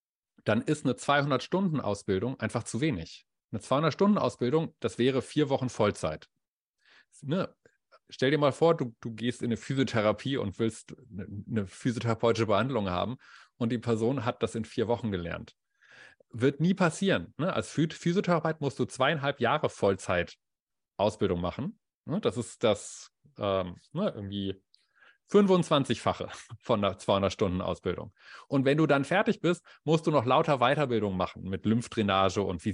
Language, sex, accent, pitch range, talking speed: German, male, German, 110-145 Hz, 145 wpm